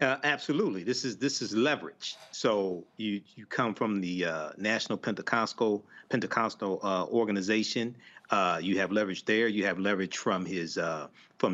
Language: English